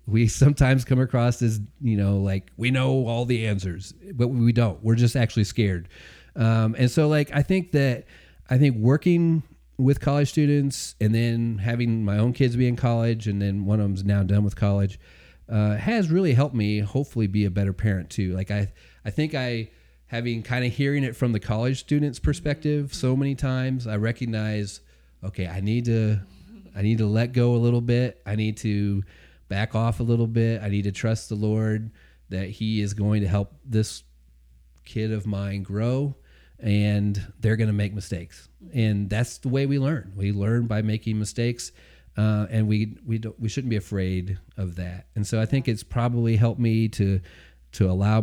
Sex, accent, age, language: male, American, 30-49, English